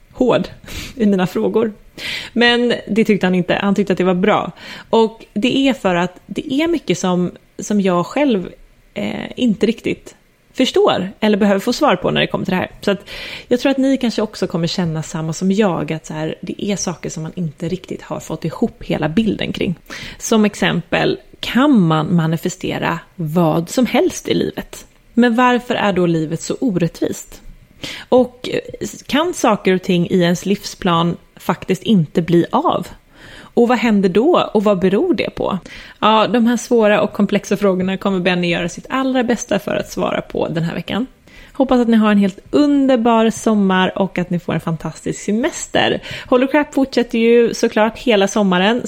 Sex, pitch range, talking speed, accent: female, 180-235 Hz, 185 wpm, Swedish